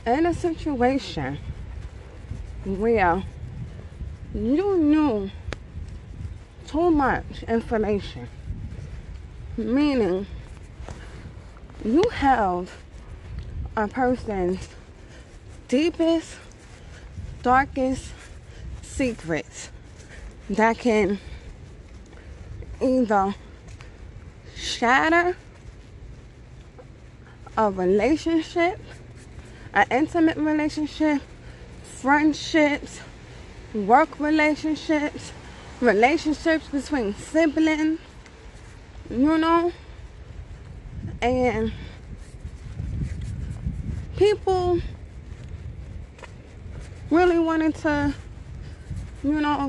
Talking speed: 50 wpm